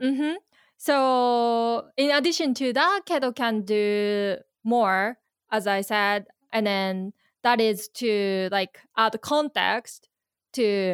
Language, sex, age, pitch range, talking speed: English, female, 20-39, 200-255 Hz, 120 wpm